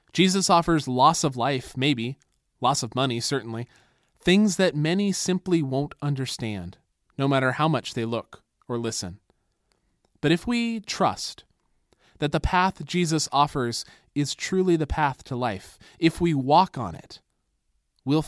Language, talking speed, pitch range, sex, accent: English, 150 wpm, 125-165 Hz, male, American